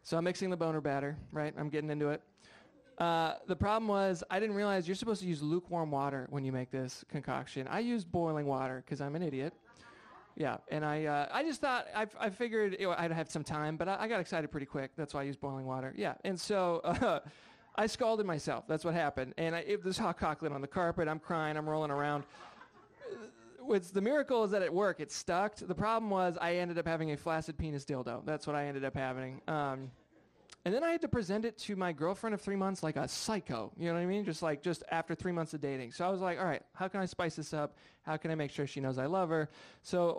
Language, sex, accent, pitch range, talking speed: English, male, American, 145-195 Hz, 255 wpm